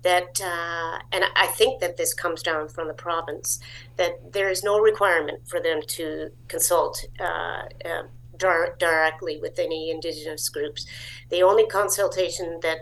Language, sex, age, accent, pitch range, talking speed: English, female, 50-69, American, 155-190 Hz, 145 wpm